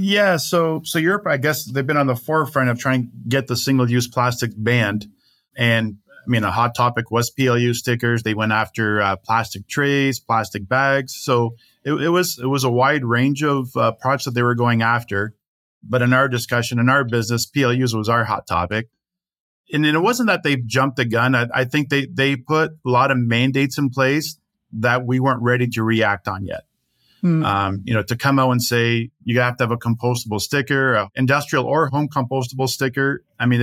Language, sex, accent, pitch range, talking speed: English, male, American, 115-135 Hz, 210 wpm